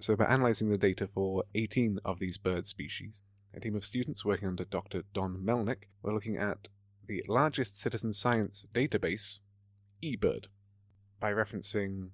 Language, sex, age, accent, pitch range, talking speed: English, male, 30-49, British, 95-110 Hz, 155 wpm